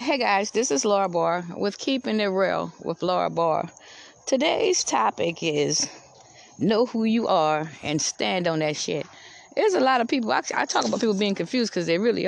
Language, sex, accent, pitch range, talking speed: English, female, American, 170-250 Hz, 190 wpm